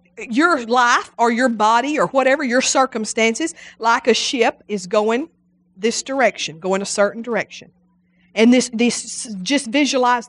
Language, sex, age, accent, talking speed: English, female, 40-59, American, 145 wpm